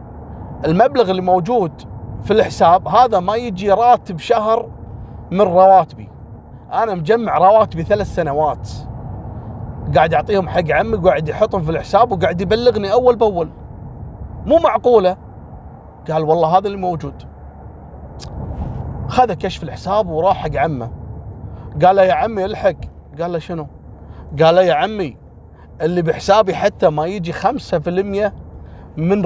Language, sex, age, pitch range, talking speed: Arabic, male, 30-49, 145-215 Hz, 125 wpm